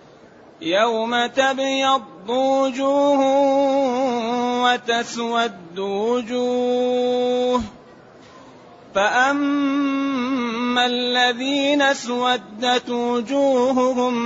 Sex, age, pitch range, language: male, 30-49, 240-275 Hz, Arabic